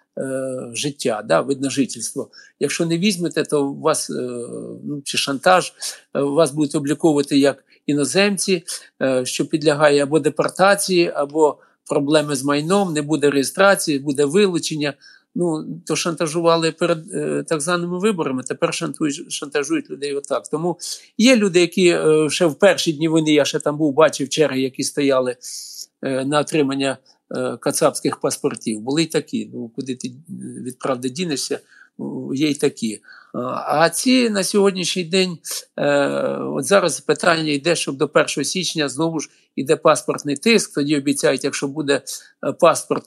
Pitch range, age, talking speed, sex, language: 140-175 Hz, 50-69, 135 wpm, male, Ukrainian